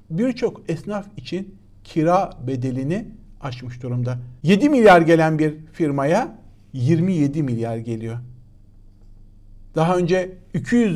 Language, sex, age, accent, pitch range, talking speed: Turkish, male, 60-79, native, 125-160 Hz, 100 wpm